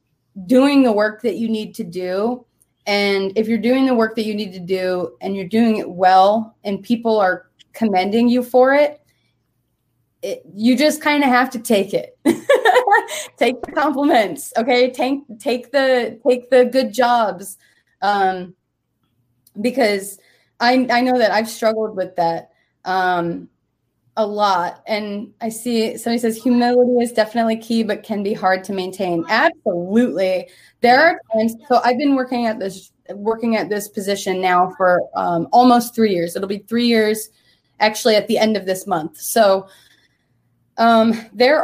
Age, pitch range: 20-39, 190-245 Hz